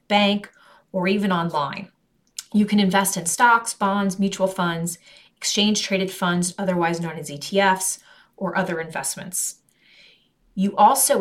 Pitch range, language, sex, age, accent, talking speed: 175-210 Hz, English, female, 30-49, American, 130 wpm